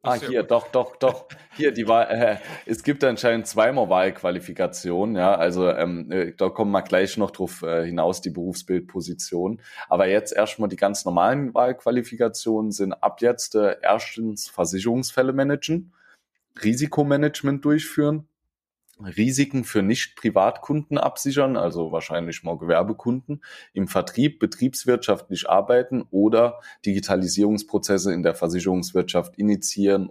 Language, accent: German, German